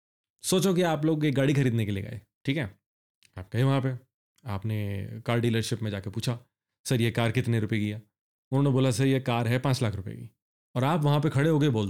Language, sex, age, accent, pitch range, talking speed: Hindi, male, 30-49, native, 115-165 Hz, 230 wpm